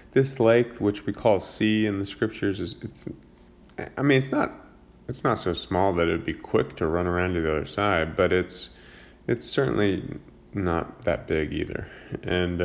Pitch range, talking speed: 85-100 Hz, 190 wpm